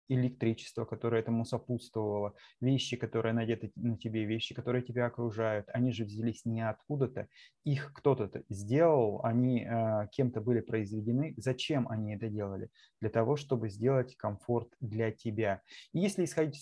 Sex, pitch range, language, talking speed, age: male, 115-130 Hz, Russian, 145 wpm, 20-39